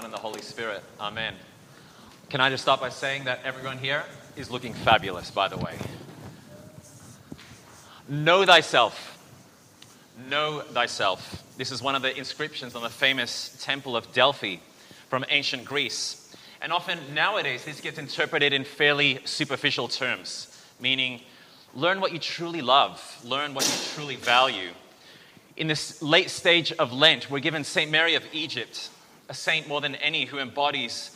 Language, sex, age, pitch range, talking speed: English, male, 30-49, 135-165 Hz, 150 wpm